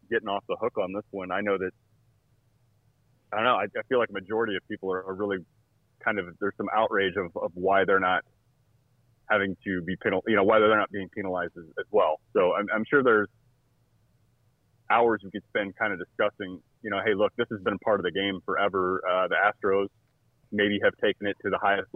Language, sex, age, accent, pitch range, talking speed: English, male, 30-49, American, 95-120 Hz, 225 wpm